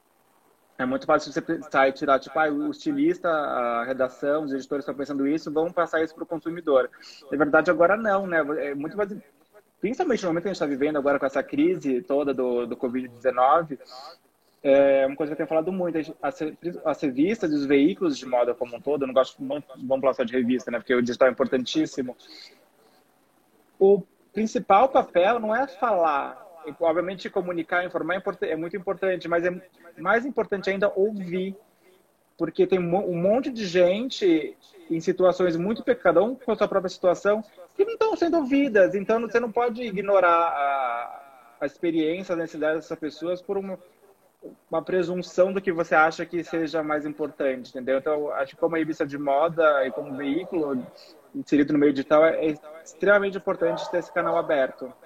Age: 20-39